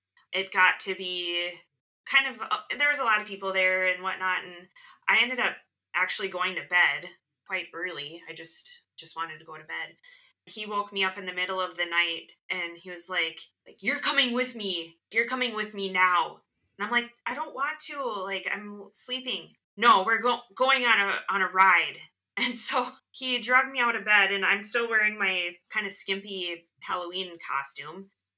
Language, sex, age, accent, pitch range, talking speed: English, female, 20-39, American, 175-215 Hz, 195 wpm